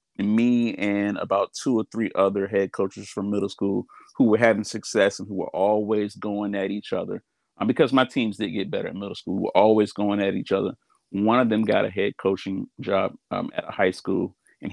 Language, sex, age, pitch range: English, male, 30-49, 95-110 Hz